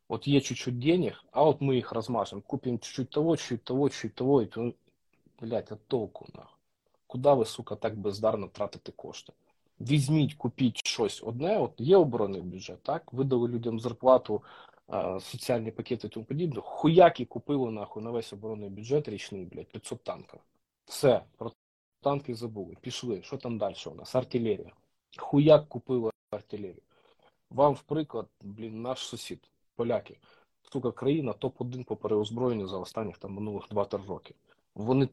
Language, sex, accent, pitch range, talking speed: Ukrainian, male, native, 110-140 Hz, 150 wpm